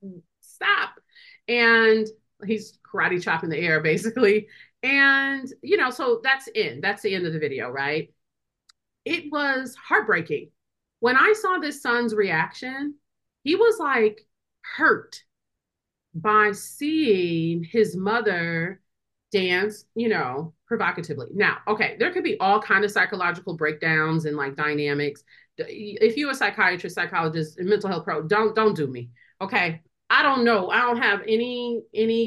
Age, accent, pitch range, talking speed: 30-49, American, 190-290 Hz, 145 wpm